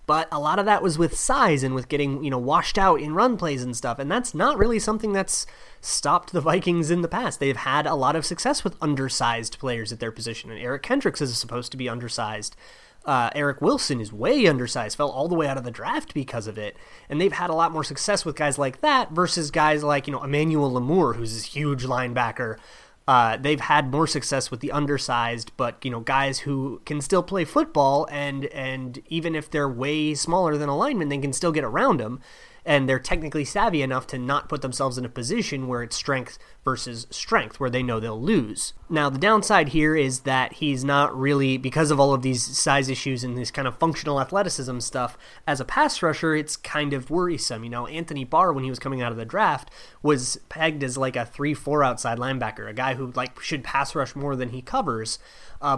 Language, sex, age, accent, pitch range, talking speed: English, male, 30-49, American, 130-160 Hz, 225 wpm